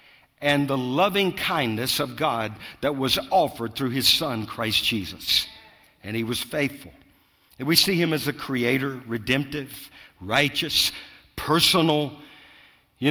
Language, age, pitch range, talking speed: English, 50-69, 115-160 Hz, 135 wpm